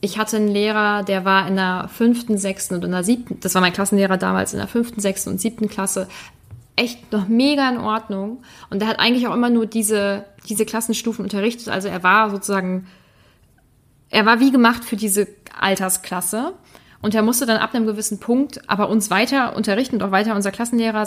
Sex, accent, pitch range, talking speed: female, German, 195-235 Hz, 200 wpm